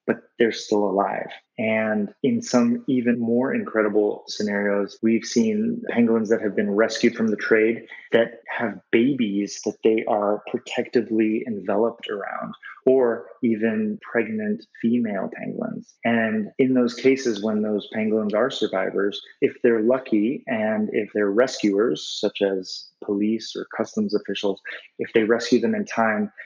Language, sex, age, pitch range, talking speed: English, male, 20-39, 105-120 Hz, 145 wpm